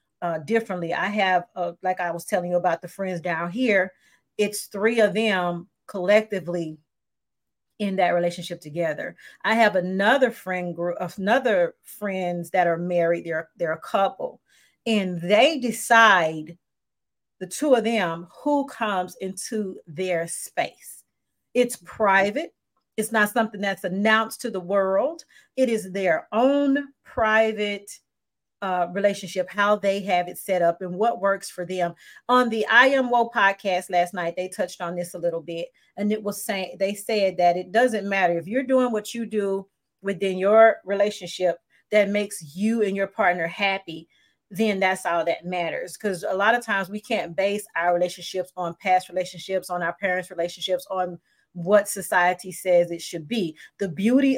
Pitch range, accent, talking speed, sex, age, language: 175-220 Hz, American, 165 wpm, female, 40-59, English